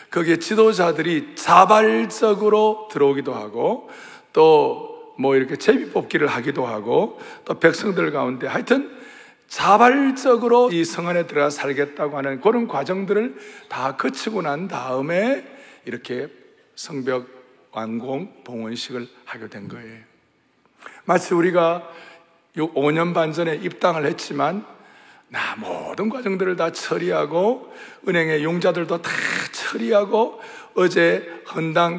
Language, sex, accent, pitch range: Korean, male, native, 140-225 Hz